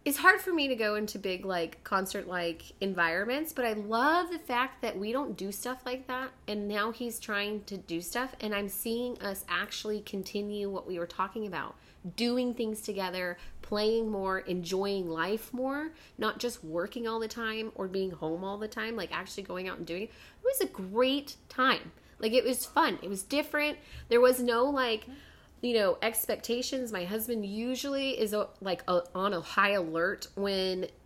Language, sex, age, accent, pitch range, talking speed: English, female, 20-39, American, 180-235 Hz, 190 wpm